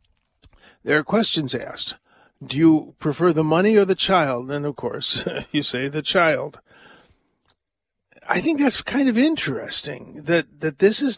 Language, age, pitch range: English, 50-69, 140-175 Hz